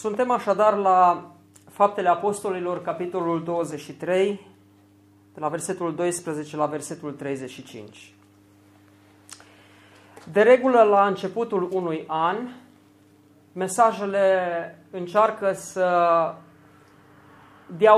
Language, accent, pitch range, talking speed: Romanian, native, 150-200 Hz, 80 wpm